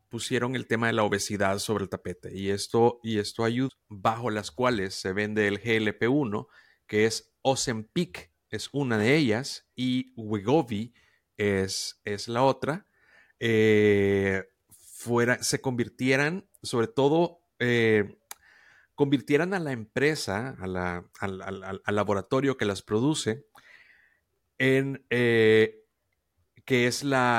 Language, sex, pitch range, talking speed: Spanish, male, 105-130 Hz, 125 wpm